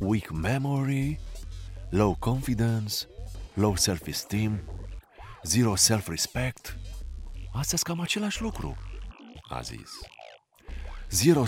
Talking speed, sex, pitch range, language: 80 wpm, male, 80-130 Hz, Romanian